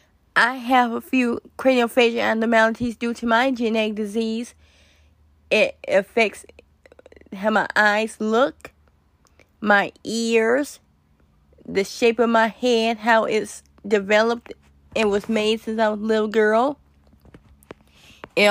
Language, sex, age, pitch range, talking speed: English, female, 20-39, 195-230 Hz, 125 wpm